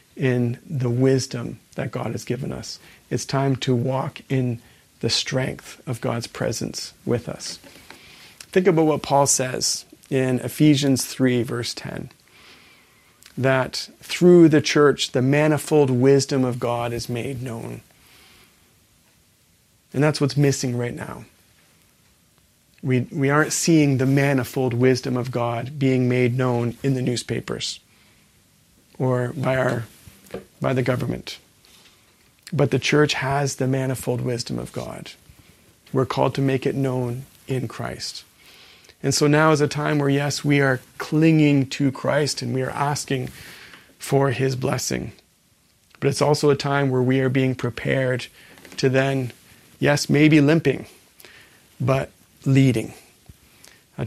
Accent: American